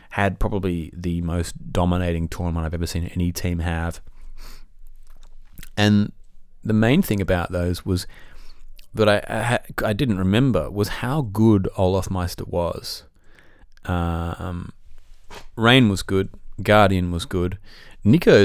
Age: 30-49